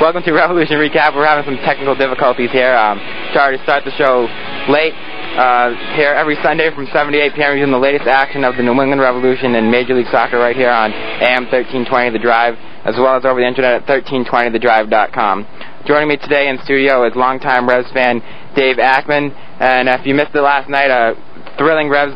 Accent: American